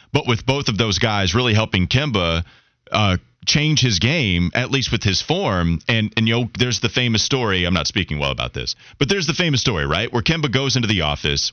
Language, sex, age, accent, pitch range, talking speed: English, male, 30-49, American, 100-130 Hz, 230 wpm